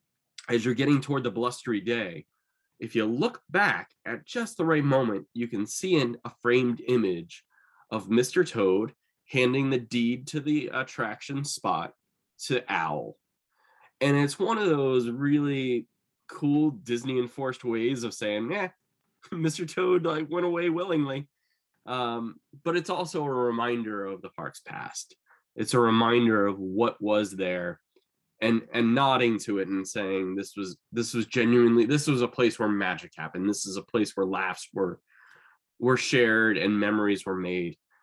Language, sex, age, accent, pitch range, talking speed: English, male, 20-39, American, 105-140 Hz, 165 wpm